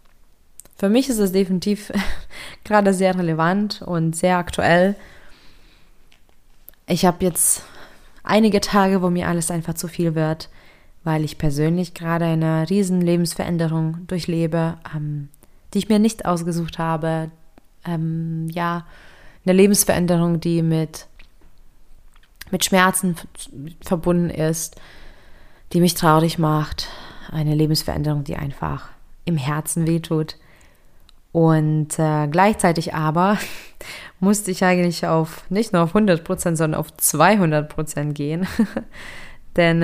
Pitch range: 155-180 Hz